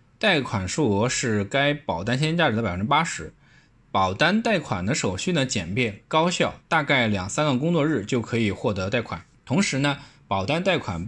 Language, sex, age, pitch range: Chinese, male, 20-39, 100-150 Hz